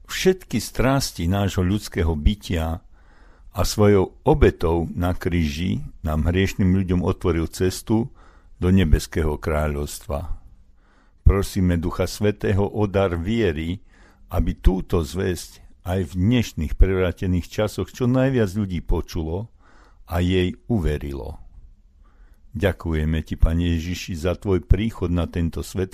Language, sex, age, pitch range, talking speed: Slovak, male, 60-79, 80-100 Hz, 115 wpm